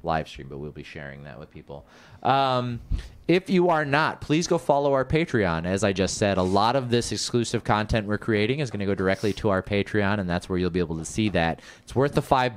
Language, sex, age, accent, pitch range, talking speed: English, male, 30-49, American, 90-120 Hz, 250 wpm